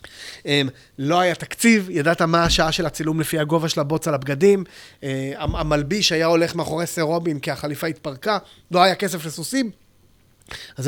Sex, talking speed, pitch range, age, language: male, 155 wpm, 150-185 Hz, 30-49, Hebrew